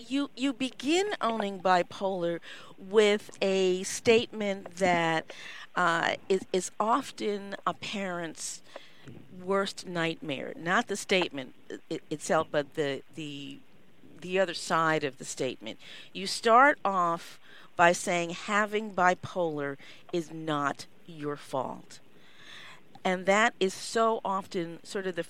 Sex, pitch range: female, 165-205 Hz